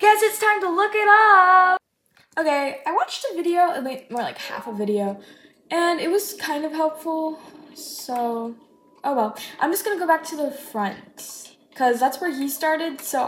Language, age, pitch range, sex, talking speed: English, 10-29, 255-340 Hz, female, 190 wpm